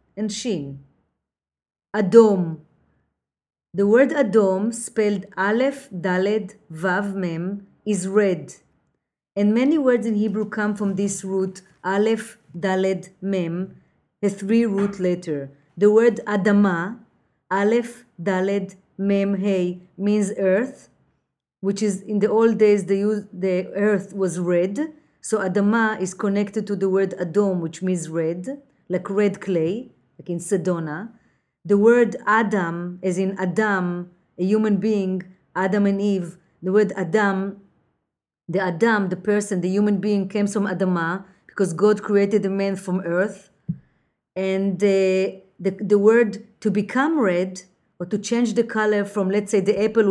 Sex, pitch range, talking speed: female, 185-215 Hz, 140 wpm